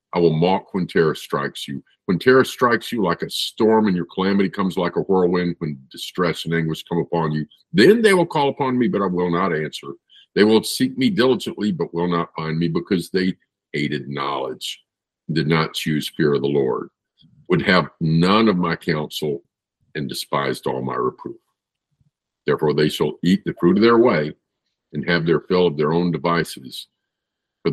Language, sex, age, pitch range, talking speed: English, male, 50-69, 80-100 Hz, 195 wpm